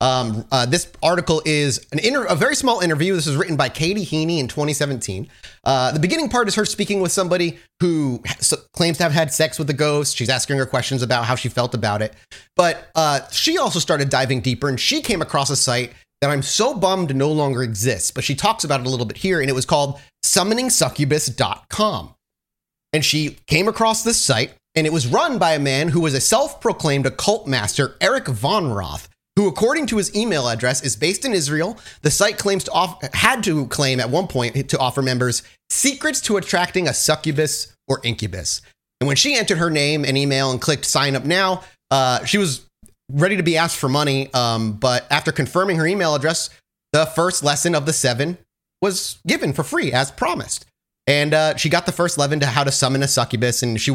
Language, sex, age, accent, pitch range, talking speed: English, male, 30-49, American, 130-175 Hz, 215 wpm